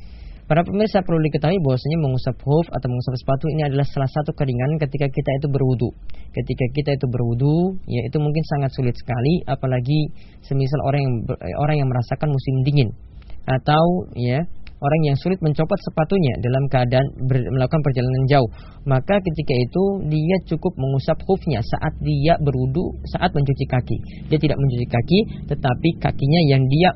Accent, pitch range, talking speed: native, 125-155 Hz, 160 wpm